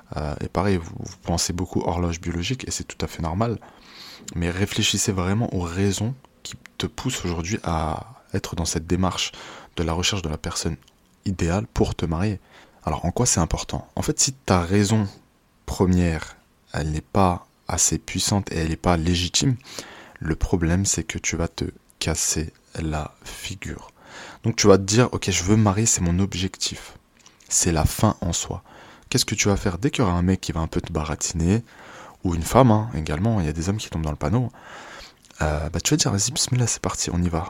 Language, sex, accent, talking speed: French, male, French, 210 wpm